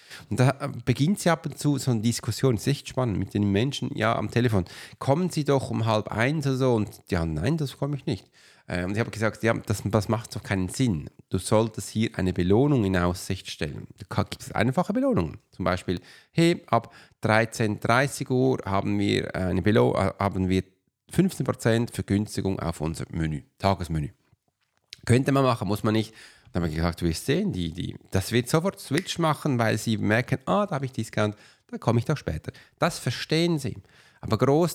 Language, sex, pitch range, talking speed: German, male, 95-130 Hz, 200 wpm